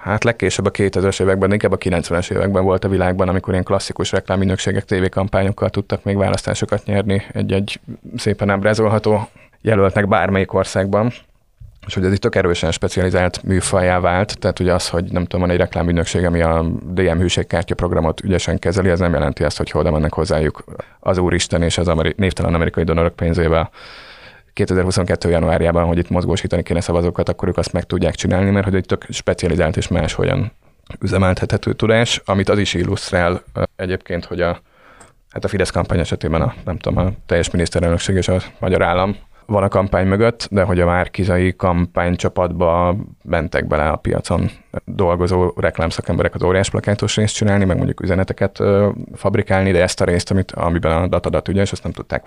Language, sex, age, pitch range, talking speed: Hungarian, male, 30-49, 85-100 Hz, 170 wpm